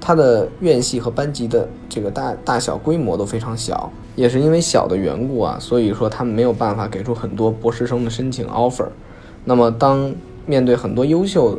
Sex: male